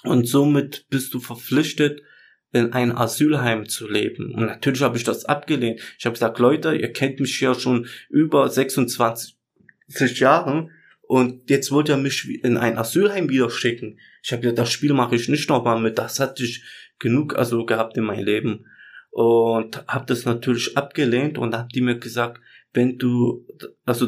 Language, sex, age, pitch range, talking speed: German, male, 20-39, 115-140 Hz, 170 wpm